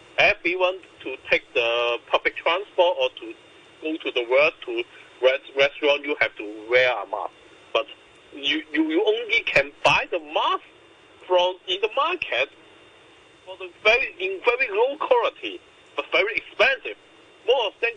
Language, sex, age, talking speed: English, male, 50-69, 160 wpm